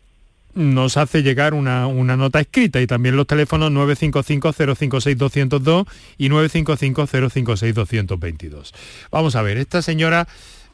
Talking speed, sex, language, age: 110 wpm, male, Spanish, 40-59